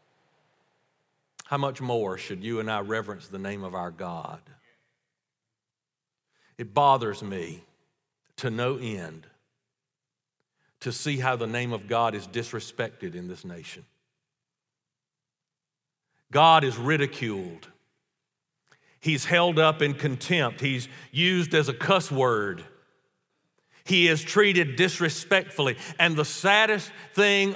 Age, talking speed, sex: 50-69, 115 wpm, male